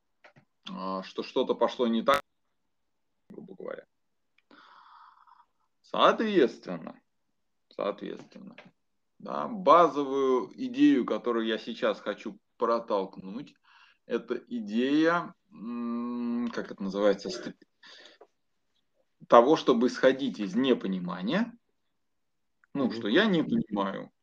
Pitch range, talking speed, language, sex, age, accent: 100-150 Hz, 80 wpm, Russian, male, 20-39, native